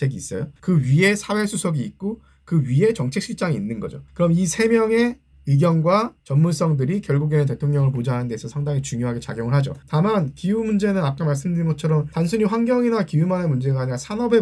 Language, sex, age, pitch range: Korean, male, 20-39, 135-180 Hz